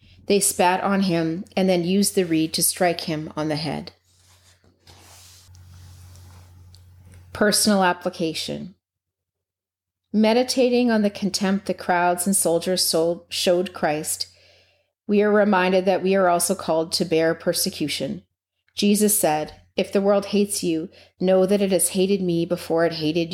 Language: English